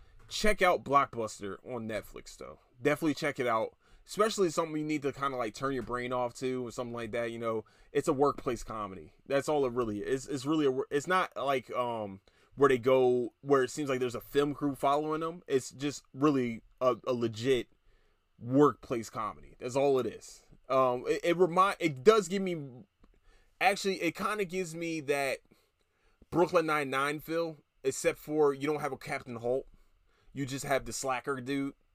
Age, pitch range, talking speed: 20-39, 125-150 Hz, 195 wpm